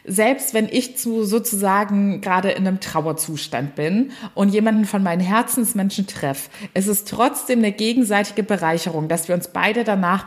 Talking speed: 160 wpm